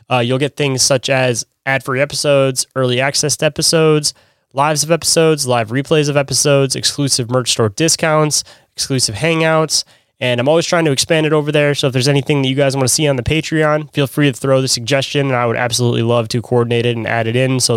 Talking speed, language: 225 wpm, English